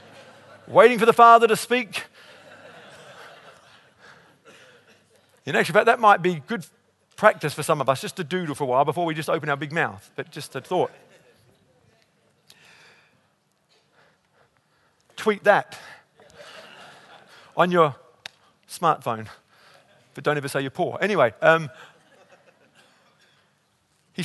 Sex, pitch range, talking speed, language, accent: male, 145-190 Hz, 120 wpm, English, British